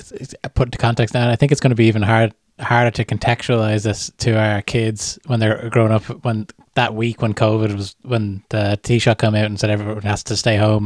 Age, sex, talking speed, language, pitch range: 20-39, male, 240 wpm, English, 105-125 Hz